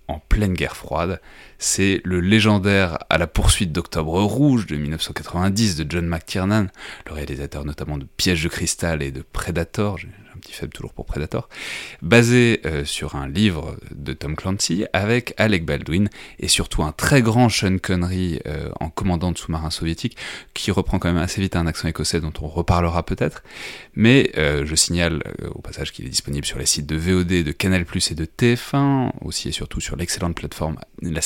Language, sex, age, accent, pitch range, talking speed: French, male, 30-49, French, 80-100 Hz, 190 wpm